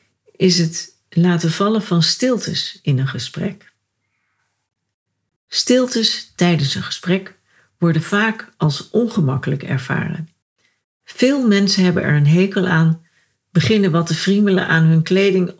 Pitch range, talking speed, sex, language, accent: 150-185 Hz, 125 wpm, female, Dutch, Dutch